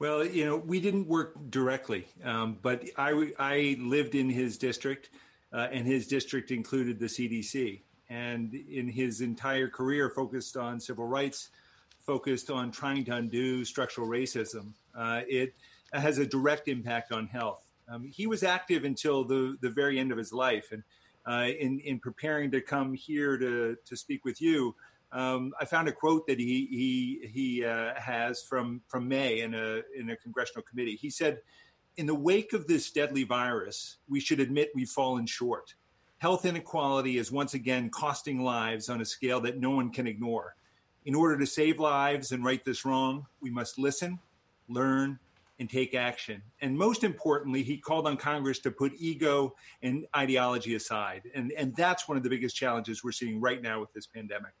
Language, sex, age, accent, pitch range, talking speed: English, male, 40-59, American, 120-145 Hz, 180 wpm